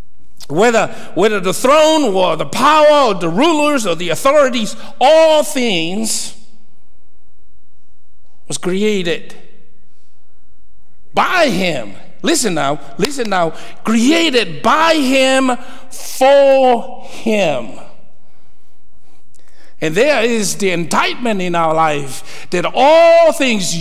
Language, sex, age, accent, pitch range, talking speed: English, male, 60-79, American, 155-255 Hz, 100 wpm